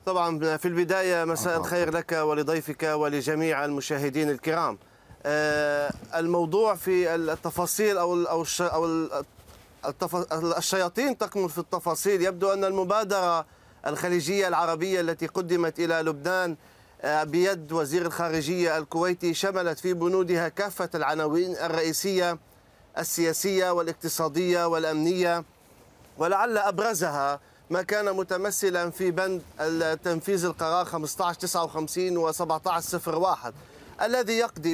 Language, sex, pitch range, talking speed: Arabic, male, 165-195 Hz, 95 wpm